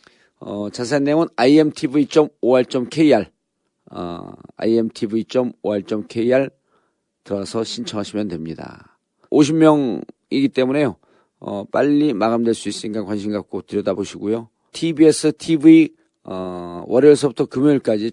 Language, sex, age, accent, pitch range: Korean, male, 40-59, native, 110-155 Hz